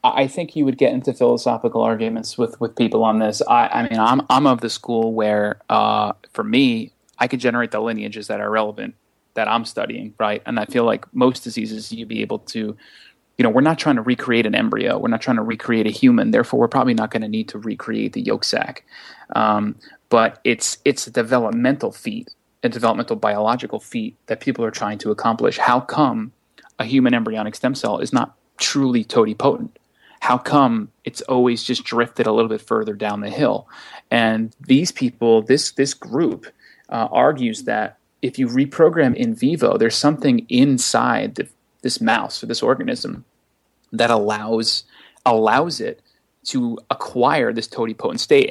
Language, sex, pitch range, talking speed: English, male, 110-155 Hz, 185 wpm